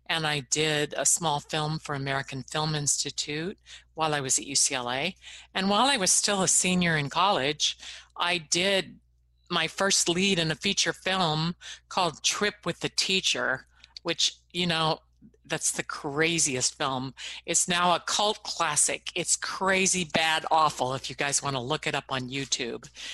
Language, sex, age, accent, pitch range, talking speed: English, female, 50-69, American, 140-180 Hz, 165 wpm